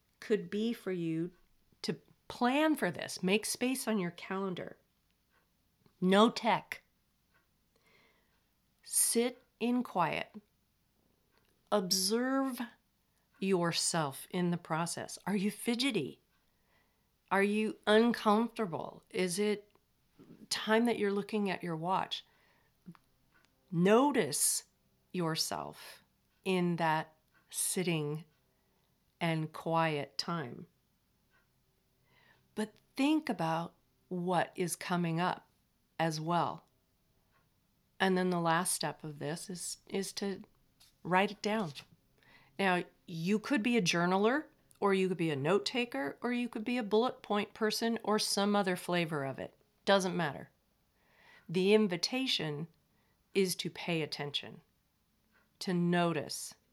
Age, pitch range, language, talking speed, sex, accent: 40-59, 170-215 Hz, English, 110 wpm, female, American